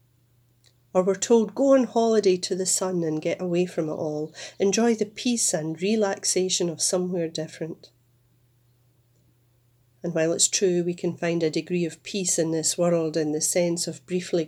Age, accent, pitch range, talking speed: 40-59, British, 125-180 Hz, 175 wpm